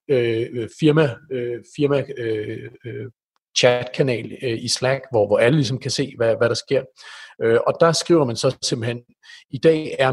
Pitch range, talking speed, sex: 110-145 Hz, 180 wpm, male